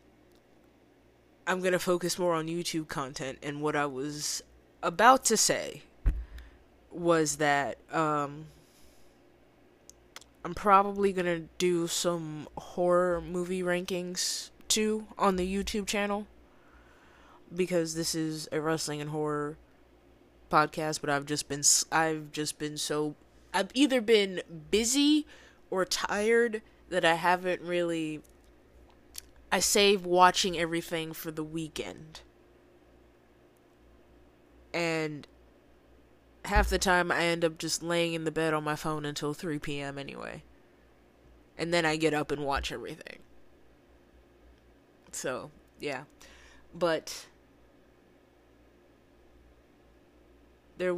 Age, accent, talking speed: 20-39, American, 115 wpm